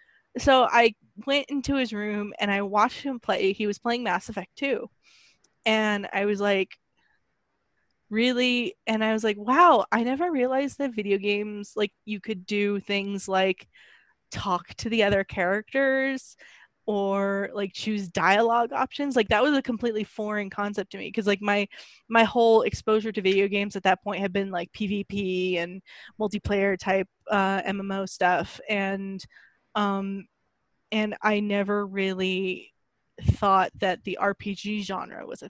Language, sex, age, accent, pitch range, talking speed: English, female, 10-29, American, 195-225 Hz, 155 wpm